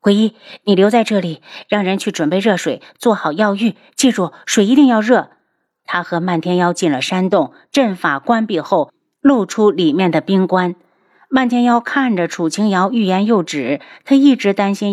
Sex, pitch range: female, 175-235 Hz